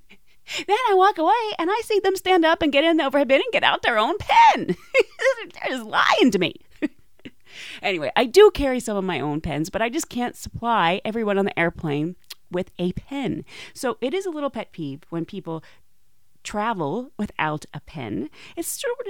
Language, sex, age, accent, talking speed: English, female, 30-49, American, 200 wpm